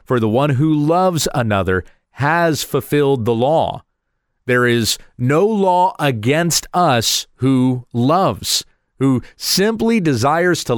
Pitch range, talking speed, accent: 115-160 Hz, 120 wpm, American